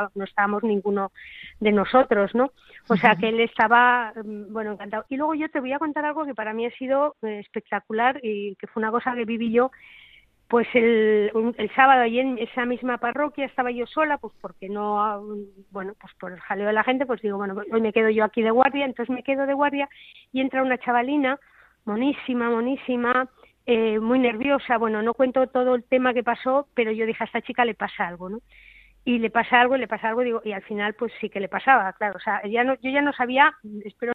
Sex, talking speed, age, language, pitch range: female, 225 wpm, 20-39, Spanish, 215-260 Hz